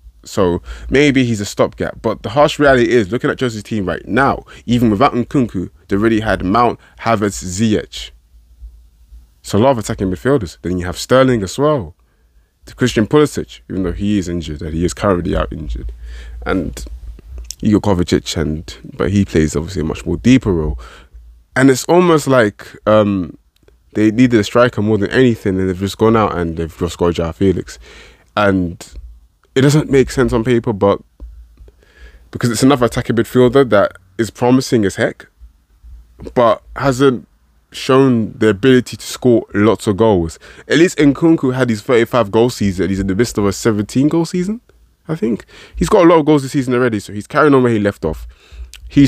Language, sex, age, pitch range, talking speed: English, male, 20-39, 85-130 Hz, 185 wpm